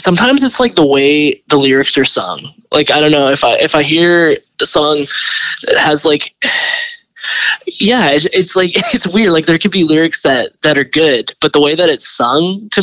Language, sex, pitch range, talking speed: English, male, 135-180 Hz, 210 wpm